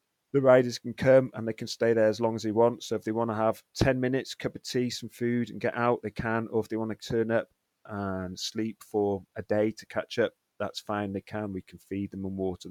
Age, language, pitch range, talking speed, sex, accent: 30-49, English, 100-115 Hz, 270 wpm, male, British